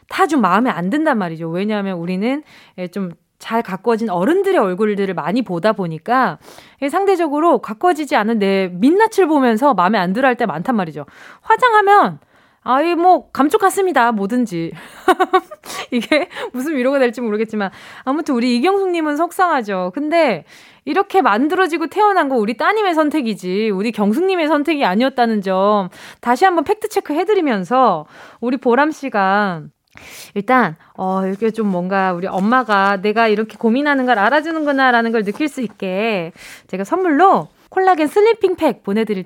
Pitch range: 200-315 Hz